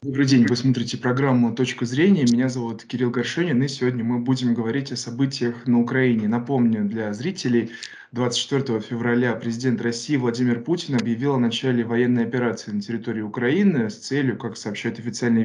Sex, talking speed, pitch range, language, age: male, 165 wpm, 120-135 Hz, Russian, 20-39